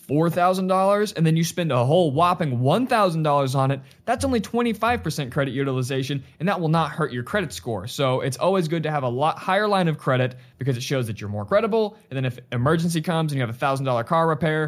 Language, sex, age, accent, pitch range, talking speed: English, male, 20-39, American, 135-180 Hz, 220 wpm